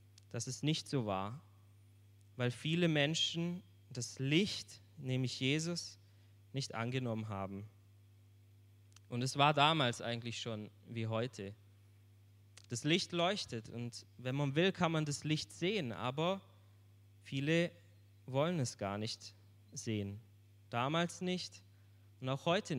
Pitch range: 100-160 Hz